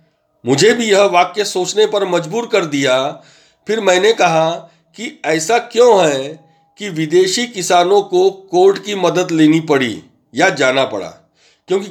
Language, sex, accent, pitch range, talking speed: Hindi, male, native, 160-220 Hz, 145 wpm